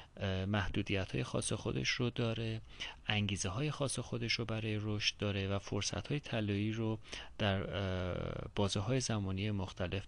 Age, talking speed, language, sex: 30-49, 135 wpm, Persian, male